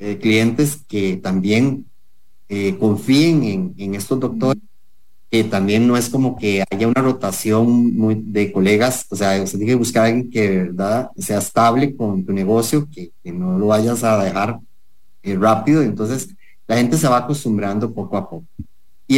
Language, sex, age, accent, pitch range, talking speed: English, male, 30-49, Mexican, 100-135 Hz, 170 wpm